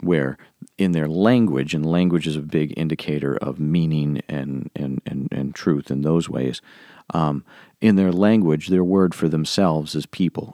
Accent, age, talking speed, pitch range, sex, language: American, 40-59, 170 wpm, 70-85 Hz, male, English